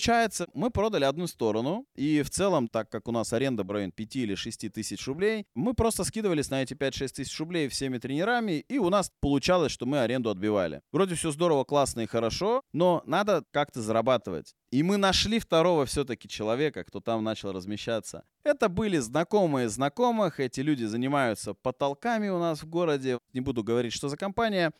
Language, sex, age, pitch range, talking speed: Russian, male, 20-39, 115-175 Hz, 180 wpm